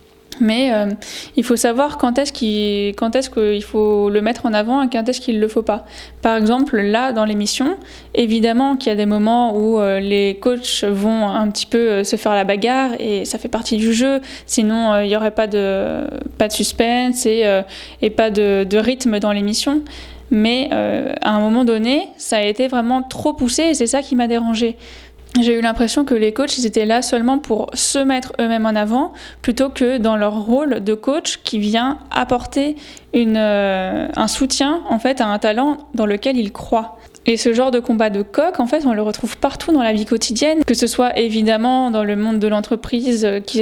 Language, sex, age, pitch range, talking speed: French, female, 20-39, 215-255 Hz, 205 wpm